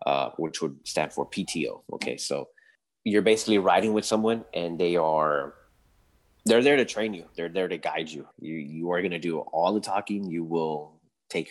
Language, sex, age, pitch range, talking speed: English, male, 20-39, 80-115 Hz, 200 wpm